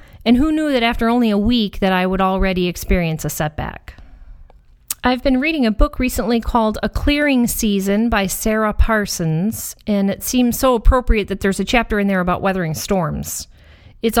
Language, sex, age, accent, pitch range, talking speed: English, female, 40-59, American, 185-230 Hz, 180 wpm